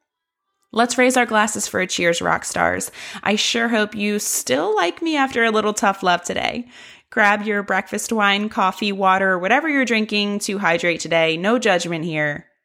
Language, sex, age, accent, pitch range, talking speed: English, female, 20-39, American, 175-230 Hz, 175 wpm